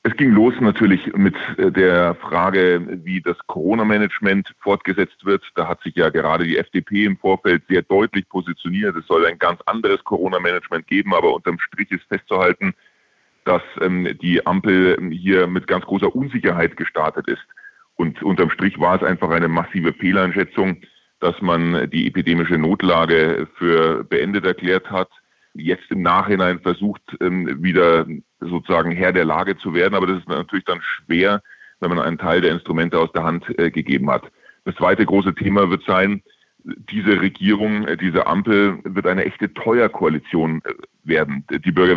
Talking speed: 160 wpm